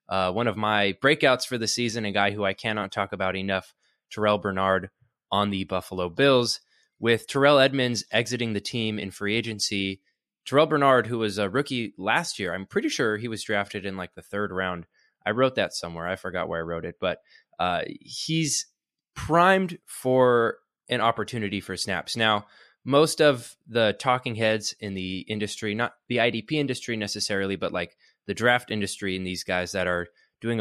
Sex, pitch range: male, 95-125 Hz